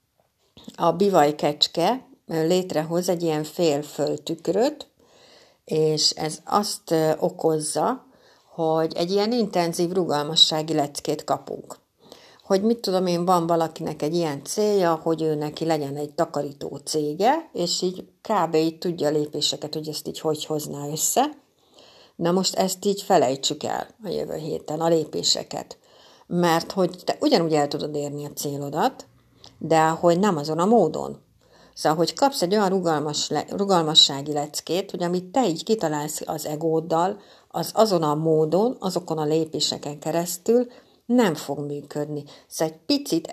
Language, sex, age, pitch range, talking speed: Hungarian, female, 60-79, 150-190 Hz, 140 wpm